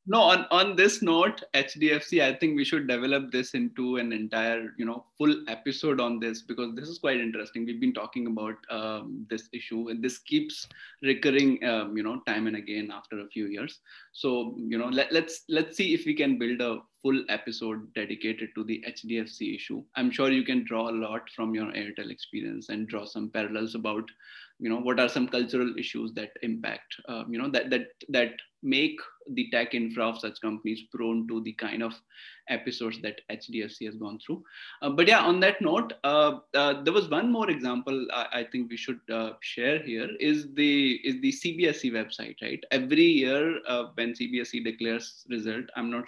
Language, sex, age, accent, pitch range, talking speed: English, male, 20-39, Indian, 115-150 Hz, 200 wpm